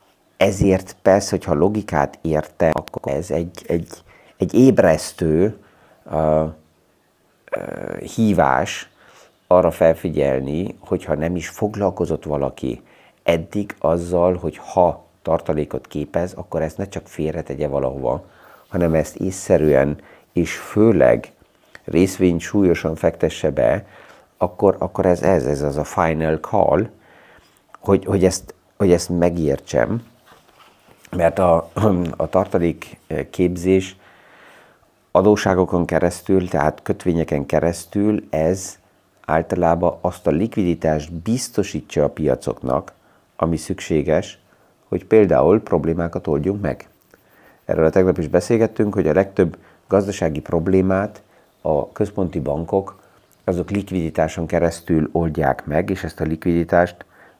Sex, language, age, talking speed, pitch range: male, Hungarian, 50-69, 110 wpm, 80-95 Hz